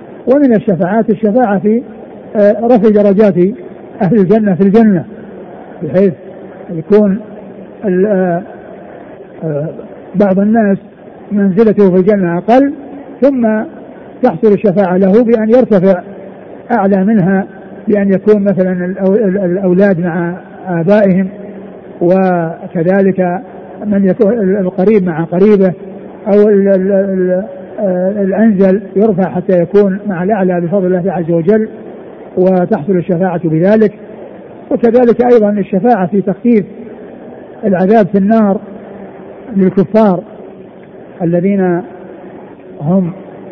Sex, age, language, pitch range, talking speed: male, 60-79, Arabic, 185-215 Hz, 90 wpm